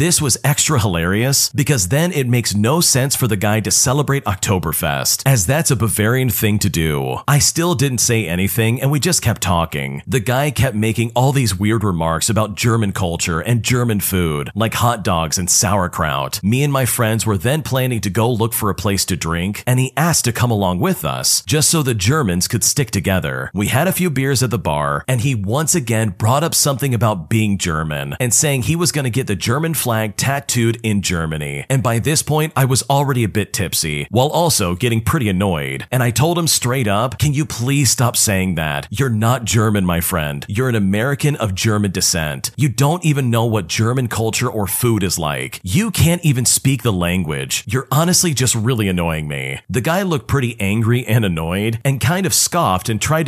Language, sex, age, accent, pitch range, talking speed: English, male, 40-59, American, 100-135 Hz, 210 wpm